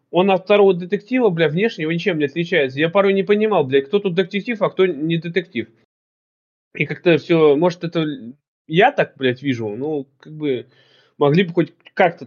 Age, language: 20-39, Russian